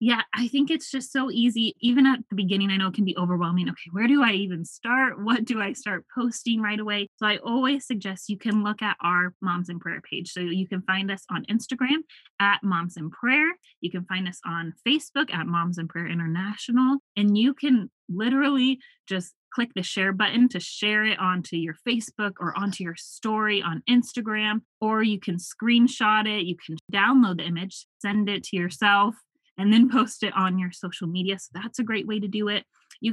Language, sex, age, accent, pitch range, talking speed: English, female, 20-39, American, 185-235 Hz, 210 wpm